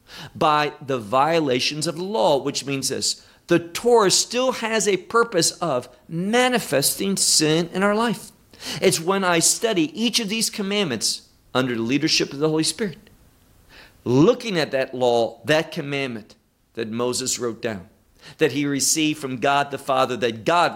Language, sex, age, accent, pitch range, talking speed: English, male, 50-69, American, 130-190 Hz, 155 wpm